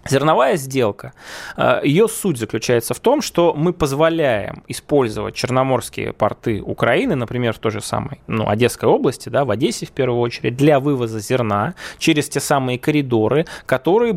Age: 20-39